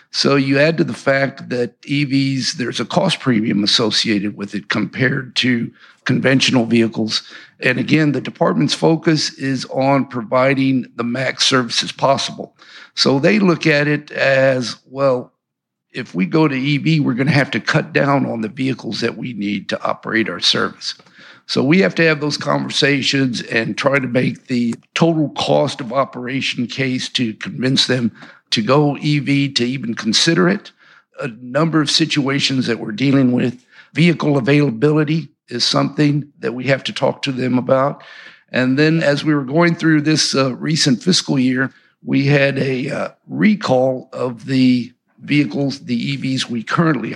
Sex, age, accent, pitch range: male, 50-69, American, 125-150 Hz